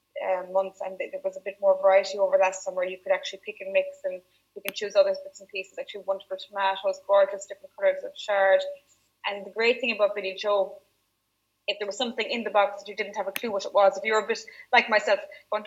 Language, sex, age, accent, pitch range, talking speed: English, female, 20-39, Irish, 195-235 Hz, 245 wpm